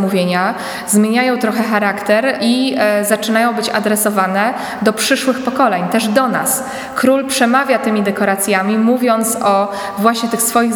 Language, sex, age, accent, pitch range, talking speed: Polish, female, 20-39, native, 200-230 Hz, 135 wpm